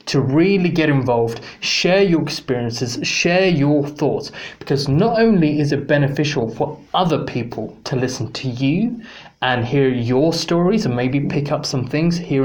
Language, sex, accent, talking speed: English, male, British, 165 wpm